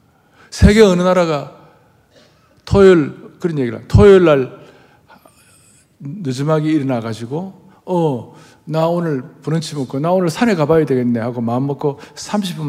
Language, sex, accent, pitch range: Korean, male, native, 130-180 Hz